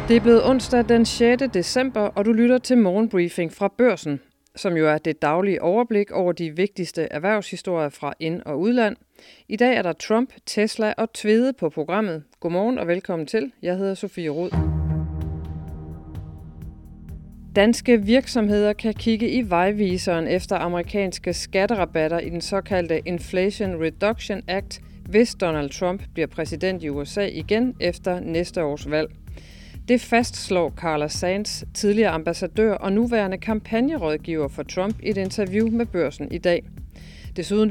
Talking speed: 145 wpm